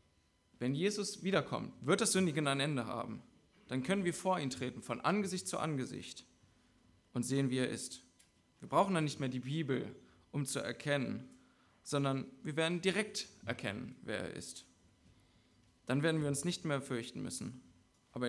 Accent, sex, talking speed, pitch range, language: German, male, 165 wpm, 110-145 Hz, German